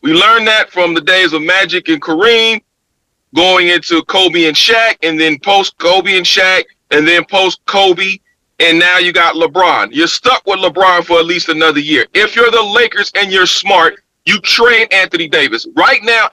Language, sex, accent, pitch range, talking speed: English, male, American, 170-230 Hz, 185 wpm